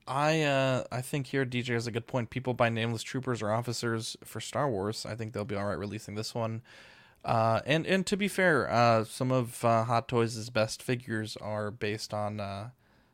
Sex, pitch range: male, 105-130 Hz